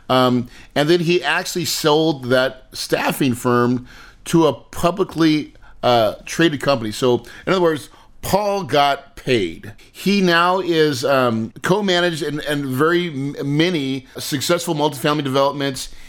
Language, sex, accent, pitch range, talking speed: English, male, American, 125-165 Hz, 125 wpm